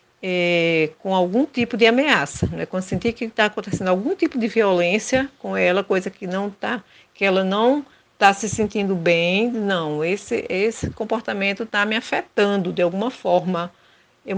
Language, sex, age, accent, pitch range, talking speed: Portuguese, female, 50-69, Brazilian, 180-230 Hz, 165 wpm